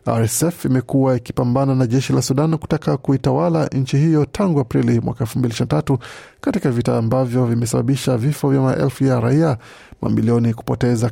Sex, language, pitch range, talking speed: male, Swahili, 120-140 Hz, 140 wpm